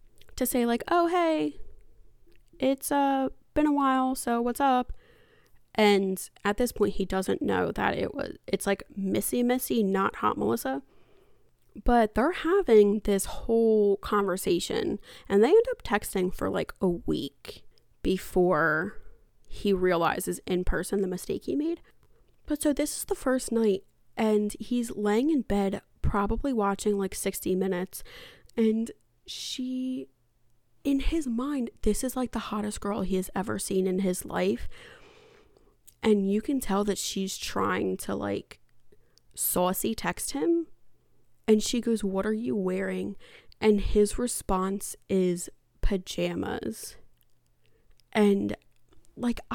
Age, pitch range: 20-39, 195-265 Hz